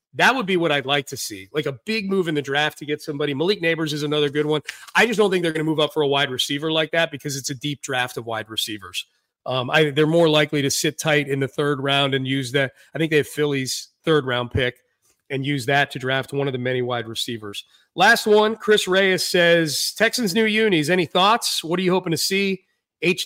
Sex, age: male, 30-49